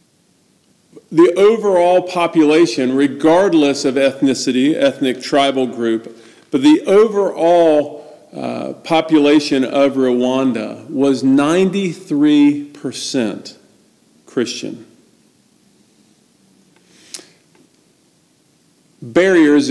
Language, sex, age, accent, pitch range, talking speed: English, male, 50-69, American, 125-160 Hz, 60 wpm